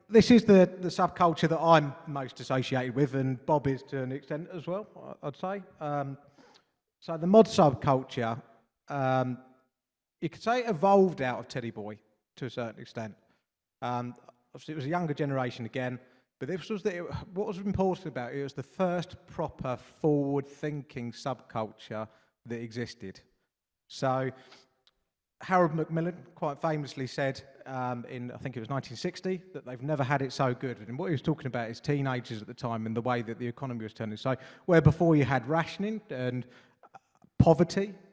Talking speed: 180 wpm